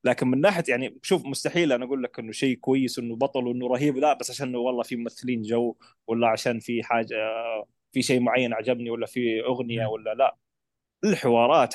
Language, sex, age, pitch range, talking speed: Arabic, male, 20-39, 120-160 Hz, 190 wpm